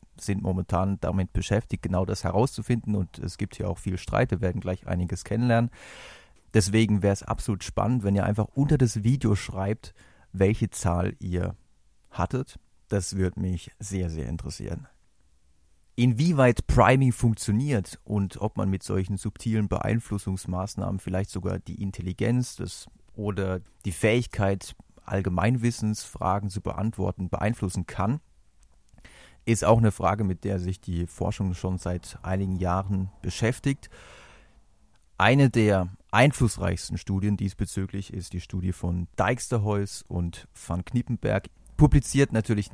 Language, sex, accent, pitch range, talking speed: German, male, German, 90-115 Hz, 130 wpm